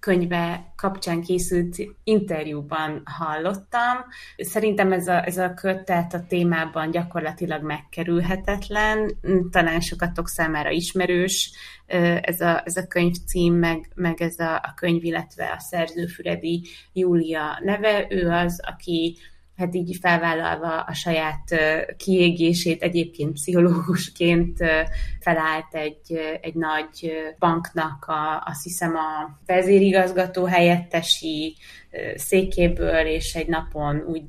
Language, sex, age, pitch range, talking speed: Hungarian, female, 20-39, 160-185 Hz, 105 wpm